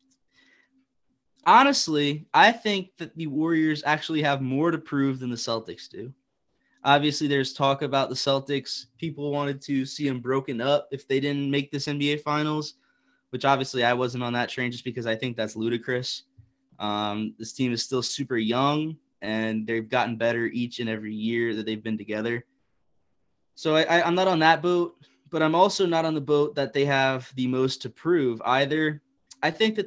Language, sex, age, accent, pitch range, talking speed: English, male, 20-39, American, 125-155 Hz, 185 wpm